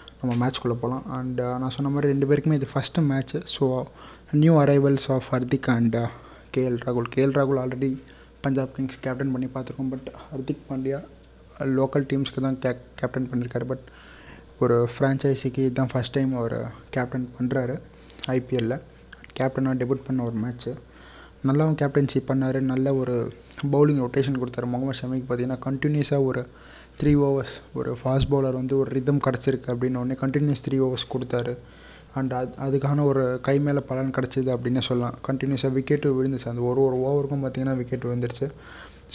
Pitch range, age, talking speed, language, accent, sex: 125-140 Hz, 20-39, 160 wpm, Tamil, native, male